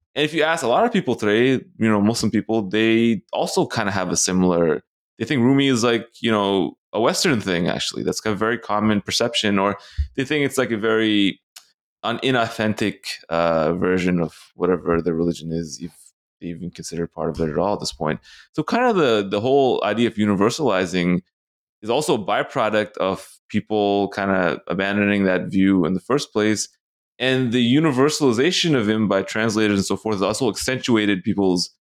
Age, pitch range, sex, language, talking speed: 20-39, 90-115 Hz, male, English, 190 wpm